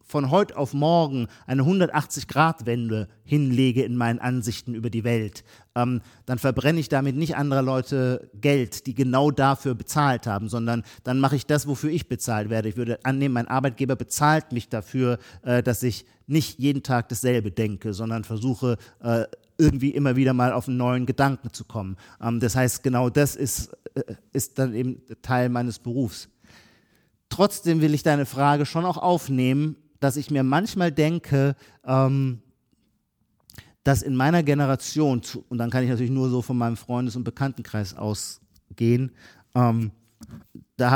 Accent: German